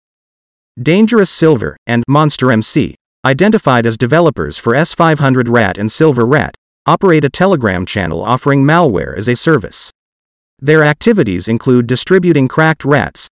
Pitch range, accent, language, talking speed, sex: 120-165 Hz, American, English, 125 wpm, male